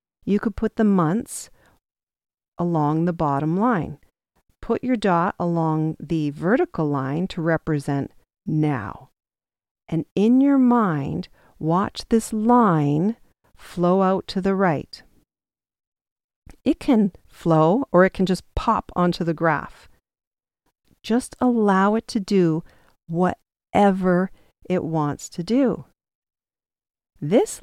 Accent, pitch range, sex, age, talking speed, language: American, 165-220 Hz, female, 50-69, 115 wpm, English